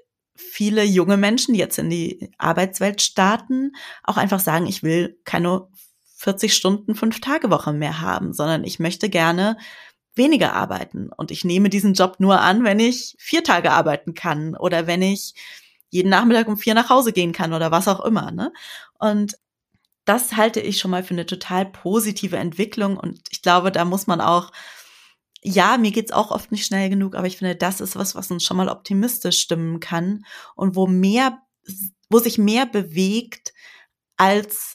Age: 20-39